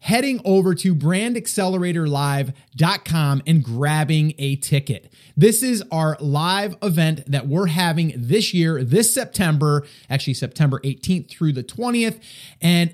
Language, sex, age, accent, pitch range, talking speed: English, male, 30-49, American, 150-220 Hz, 125 wpm